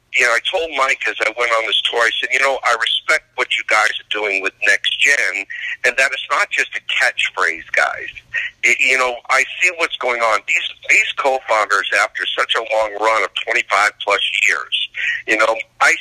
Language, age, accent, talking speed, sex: English, 50-69, American, 205 wpm, male